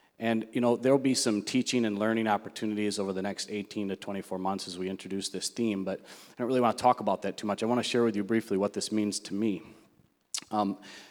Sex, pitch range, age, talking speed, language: male, 95-110 Hz, 30-49, 255 wpm, English